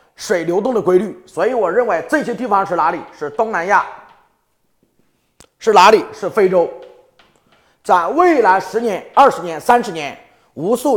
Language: Chinese